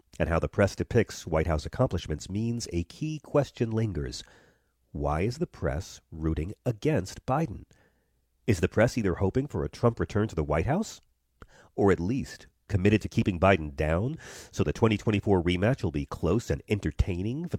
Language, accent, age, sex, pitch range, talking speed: English, American, 40-59, male, 80-110 Hz, 175 wpm